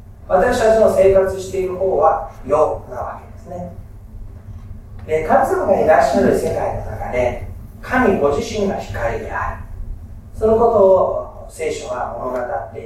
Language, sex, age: Japanese, male, 40-59